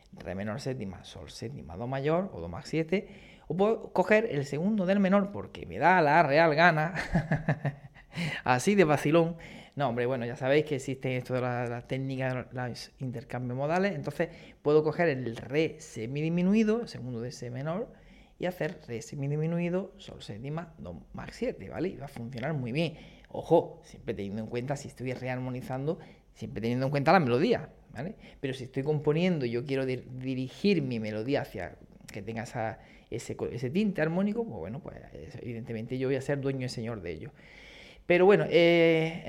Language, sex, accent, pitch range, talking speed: Spanish, male, Spanish, 125-180 Hz, 185 wpm